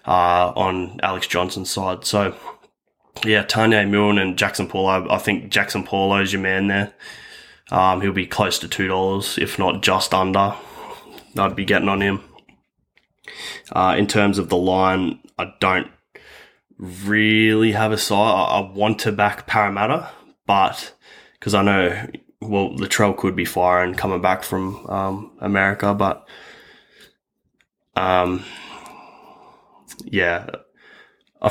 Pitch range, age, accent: 95-105 Hz, 10-29, Australian